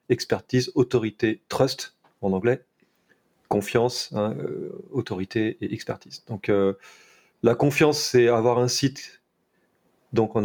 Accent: French